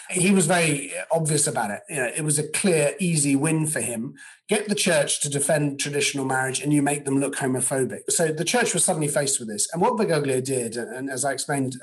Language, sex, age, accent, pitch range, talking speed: English, male, 40-59, British, 135-185 Hz, 220 wpm